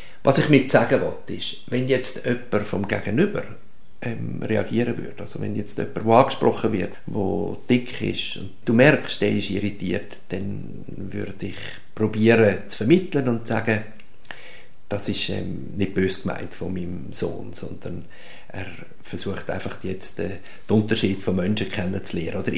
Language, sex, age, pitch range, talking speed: German, male, 50-69, 100-115 Hz, 160 wpm